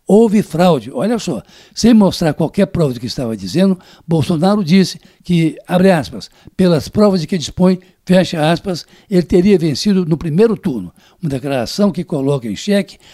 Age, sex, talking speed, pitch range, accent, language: 60-79, male, 165 wpm, 155-195 Hz, Brazilian, Portuguese